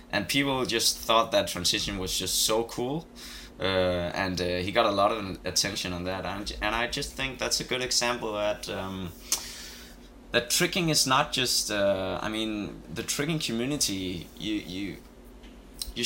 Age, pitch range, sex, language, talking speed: 20-39, 90-120 Hz, male, English, 170 wpm